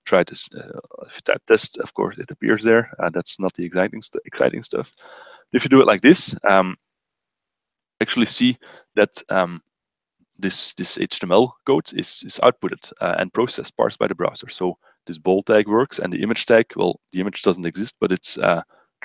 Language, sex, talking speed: English, male, 200 wpm